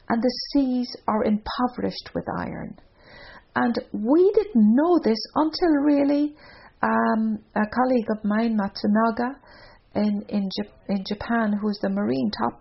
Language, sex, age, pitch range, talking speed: English, female, 50-69, 210-270 Hz, 145 wpm